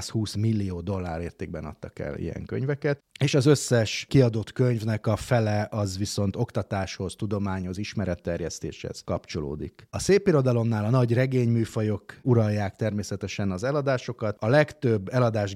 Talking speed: 130 wpm